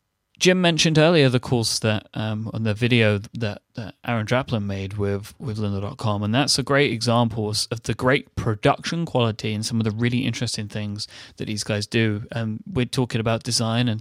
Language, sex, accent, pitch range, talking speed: English, male, British, 110-130 Hz, 190 wpm